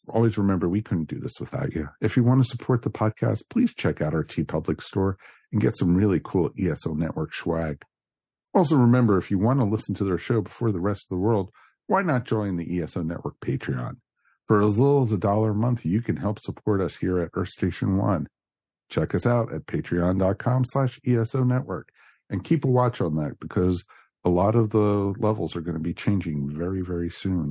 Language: English